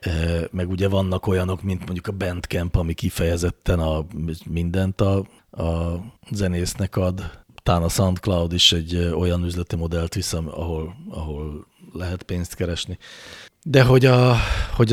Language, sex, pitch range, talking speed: English, male, 85-105 Hz, 135 wpm